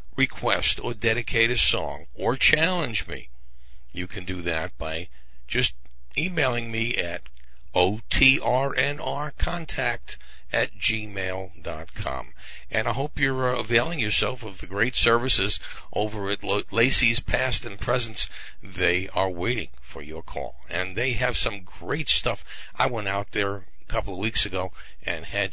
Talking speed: 140 wpm